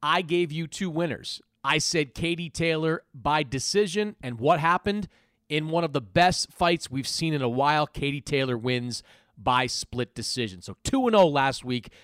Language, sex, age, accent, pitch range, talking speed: English, male, 40-59, American, 120-165 Hz, 180 wpm